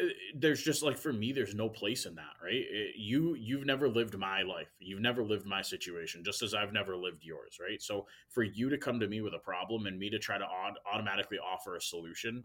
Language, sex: English, male